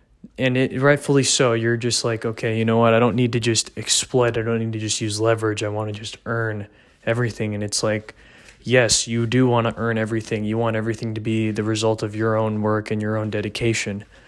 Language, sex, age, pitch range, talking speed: English, male, 20-39, 110-120 Hz, 230 wpm